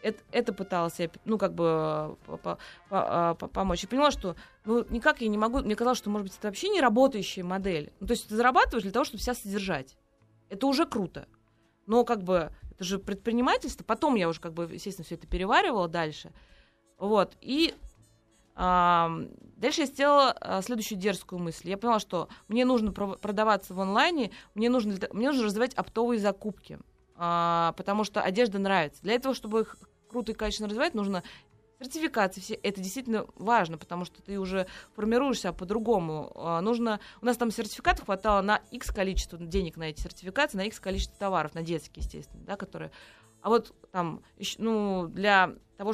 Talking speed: 175 wpm